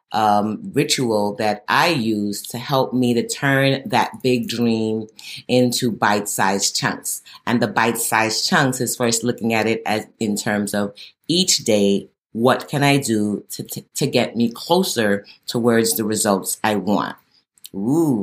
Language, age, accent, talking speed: English, 30-49, American, 155 wpm